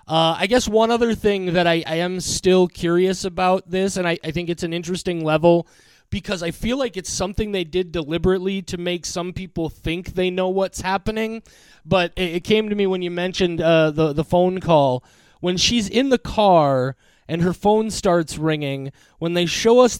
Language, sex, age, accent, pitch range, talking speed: English, male, 20-39, American, 160-190 Hz, 205 wpm